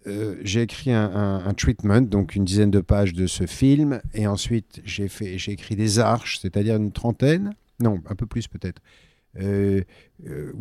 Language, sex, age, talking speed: French, male, 50-69, 180 wpm